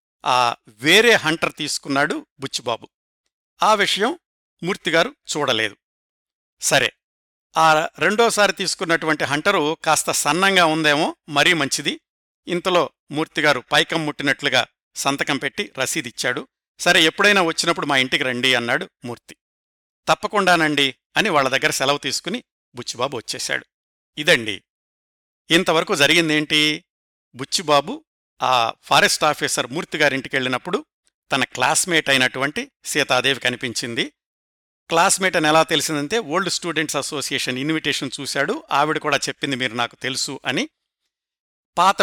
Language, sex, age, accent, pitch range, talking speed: Telugu, male, 50-69, native, 140-170 Hz, 105 wpm